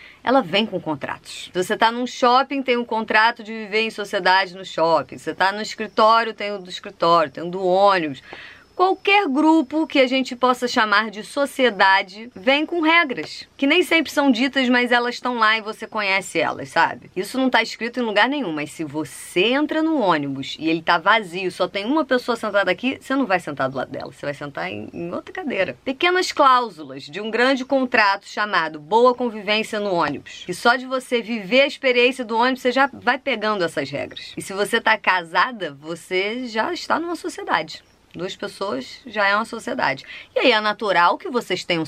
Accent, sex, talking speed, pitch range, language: Brazilian, female, 205 wpm, 185-250 Hz, Portuguese